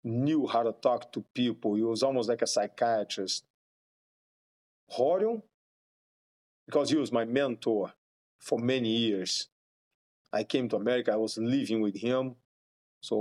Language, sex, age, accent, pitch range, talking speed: English, male, 40-59, Brazilian, 105-130 Hz, 140 wpm